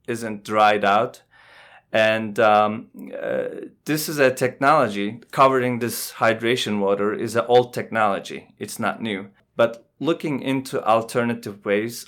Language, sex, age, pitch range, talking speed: English, male, 30-49, 105-125 Hz, 130 wpm